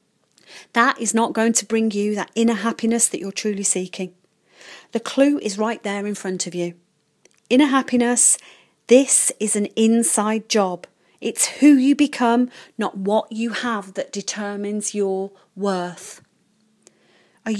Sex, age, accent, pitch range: female, 40-59, British, 185-230 Hz